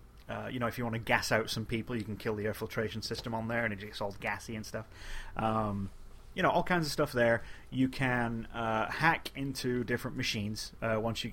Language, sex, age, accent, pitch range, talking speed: English, male, 30-49, British, 105-130 Hz, 240 wpm